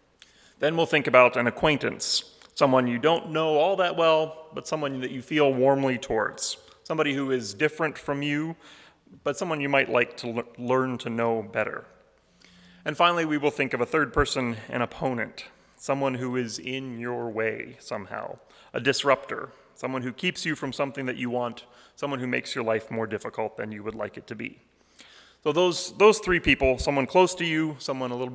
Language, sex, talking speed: English, male, 195 wpm